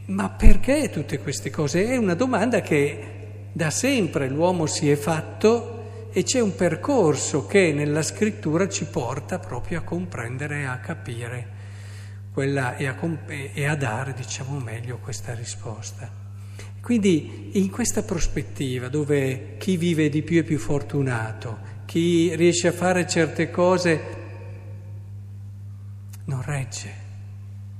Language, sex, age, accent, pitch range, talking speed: Italian, male, 50-69, native, 100-150 Hz, 130 wpm